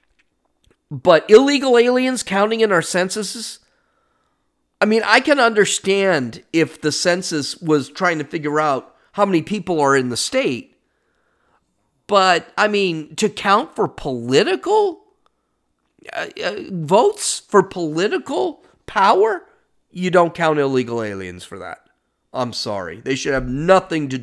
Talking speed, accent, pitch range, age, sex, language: 135 wpm, American, 135-215 Hz, 40-59, male, English